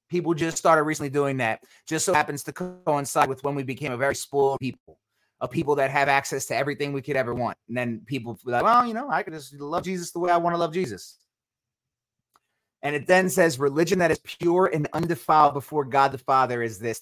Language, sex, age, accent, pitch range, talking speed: English, male, 30-49, American, 130-175 Hz, 230 wpm